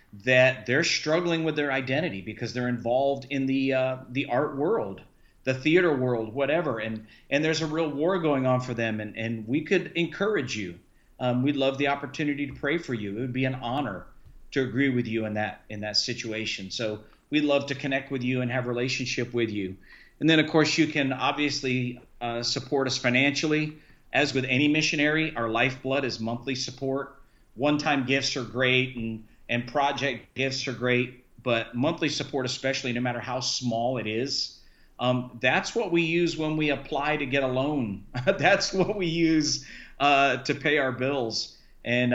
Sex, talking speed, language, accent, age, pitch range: male, 190 wpm, English, American, 40-59, 120-140 Hz